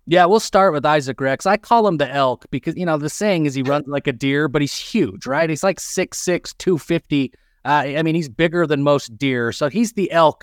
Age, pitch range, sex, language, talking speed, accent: 30-49, 130-160 Hz, male, English, 240 wpm, American